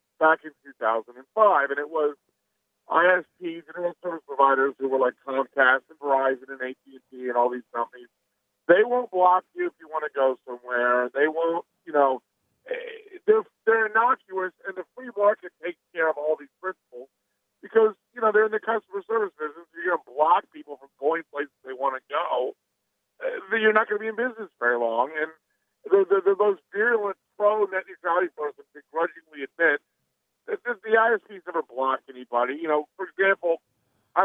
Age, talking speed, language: 50-69, 180 wpm, English